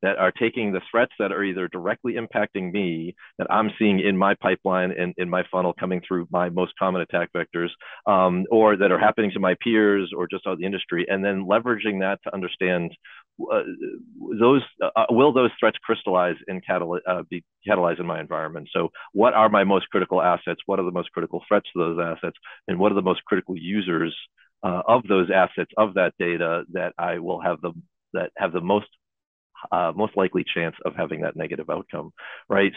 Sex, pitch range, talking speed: male, 90-105 Hz, 205 wpm